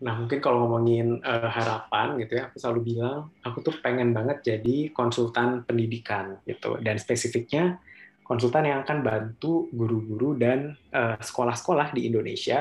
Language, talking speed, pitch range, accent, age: Indonesian, 150 wpm, 115-135 Hz, native, 20-39